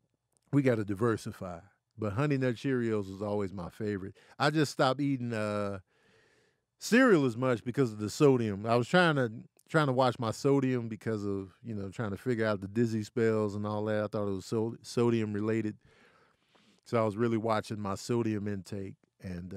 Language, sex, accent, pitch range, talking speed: English, male, American, 105-135 Hz, 190 wpm